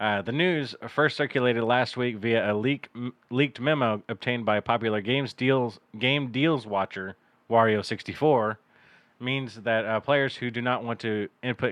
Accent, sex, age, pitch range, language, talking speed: American, male, 30-49, 110-135 Hz, English, 165 wpm